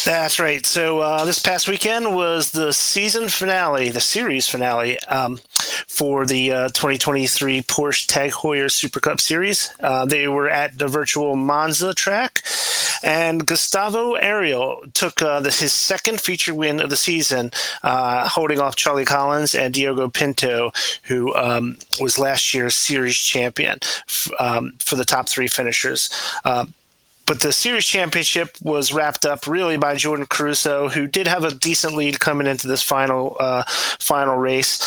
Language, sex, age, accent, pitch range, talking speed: English, male, 30-49, American, 130-165 Hz, 160 wpm